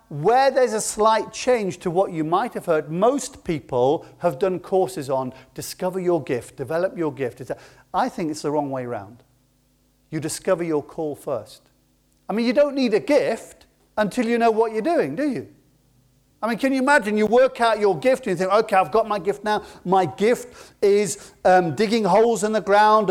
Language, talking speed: English, 205 wpm